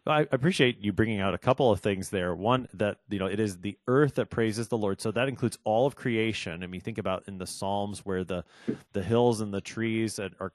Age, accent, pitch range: 30-49, American, 95-125 Hz